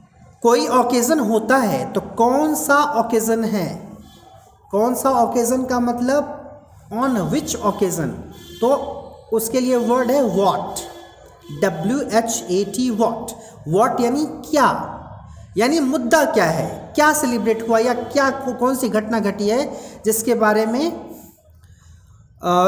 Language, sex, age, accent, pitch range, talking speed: Hindi, male, 40-59, native, 215-285 Hz, 125 wpm